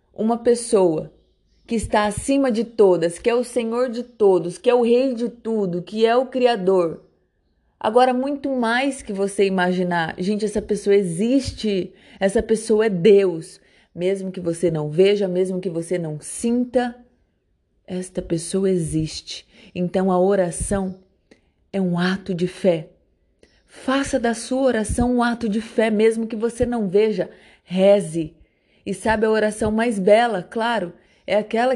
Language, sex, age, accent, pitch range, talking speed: Portuguese, female, 30-49, Brazilian, 180-225 Hz, 155 wpm